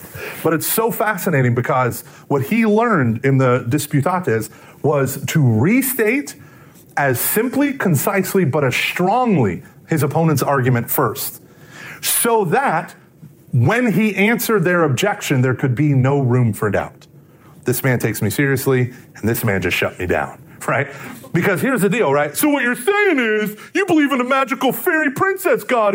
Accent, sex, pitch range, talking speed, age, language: American, male, 130-215 Hz, 160 wpm, 30-49, English